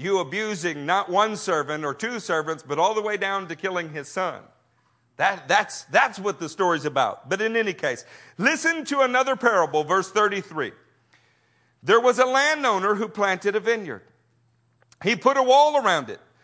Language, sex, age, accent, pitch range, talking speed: English, male, 50-69, American, 155-235 Hz, 170 wpm